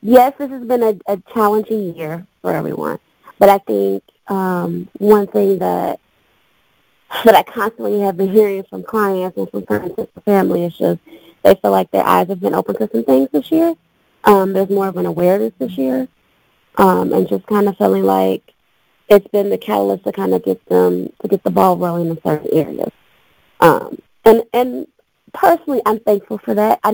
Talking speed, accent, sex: 190 wpm, American, female